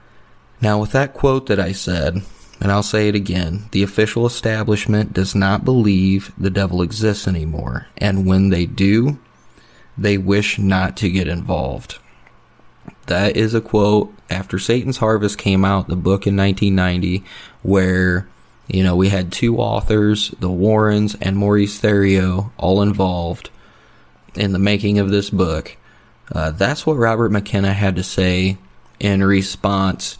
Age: 20-39